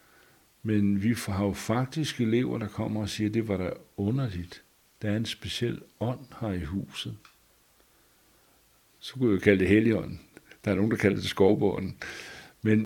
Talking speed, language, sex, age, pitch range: 175 wpm, Danish, male, 60-79, 95-115 Hz